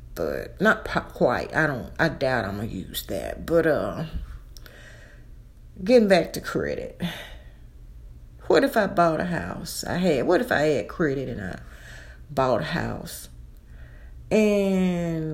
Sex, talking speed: female, 145 wpm